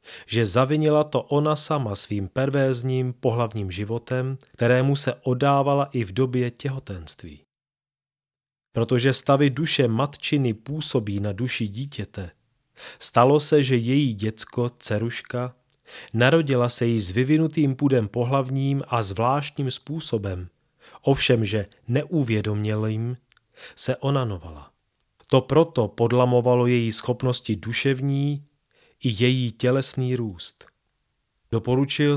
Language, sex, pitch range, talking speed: Czech, male, 115-140 Hz, 105 wpm